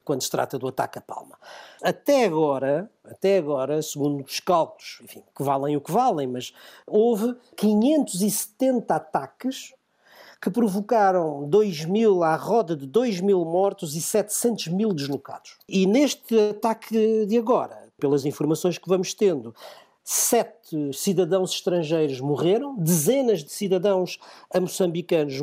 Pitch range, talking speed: 155-215 Hz, 130 wpm